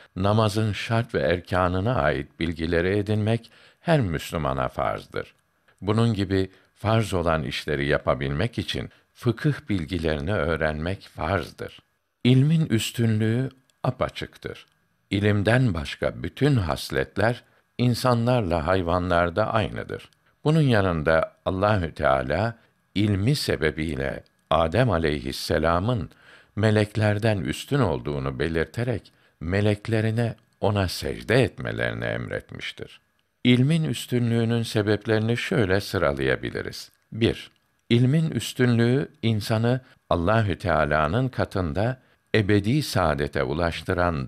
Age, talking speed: 60-79, 85 wpm